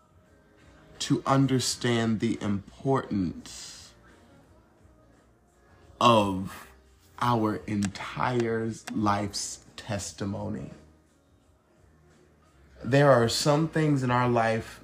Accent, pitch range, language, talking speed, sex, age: American, 105-130 Hz, English, 65 wpm, male, 30-49